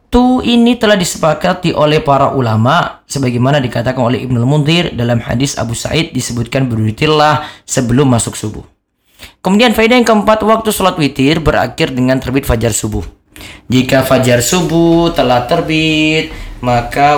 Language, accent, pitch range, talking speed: Indonesian, native, 125-185 Hz, 135 wpm